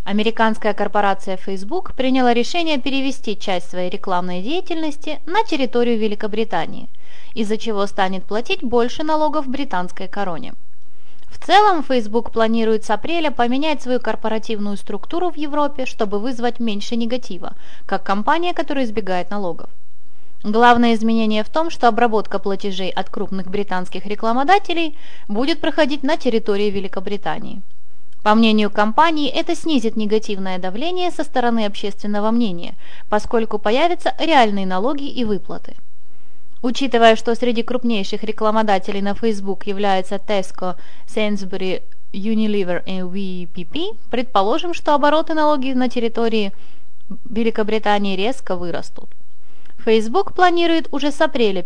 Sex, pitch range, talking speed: female, 200-280 Hz, 120 wpm